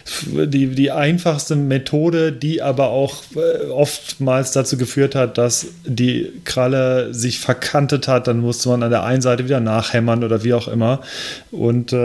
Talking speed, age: 155 wpm, 30-49